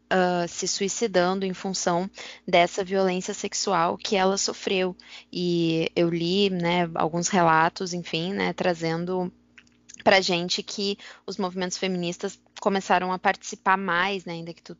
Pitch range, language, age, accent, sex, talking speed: 175-195 Hz, Portuguese, 10-29, Brazilian, female, 140 wpm